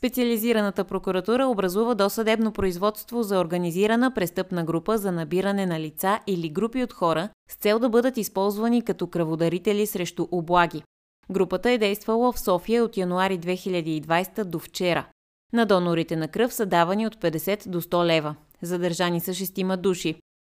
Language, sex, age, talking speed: Bulgarian, female, 20-39, 150 wpm